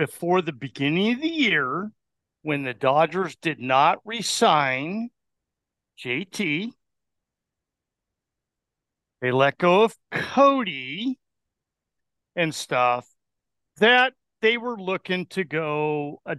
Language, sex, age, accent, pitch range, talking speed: English, male, 50-69, American, 145-220 Hz, 100 wpm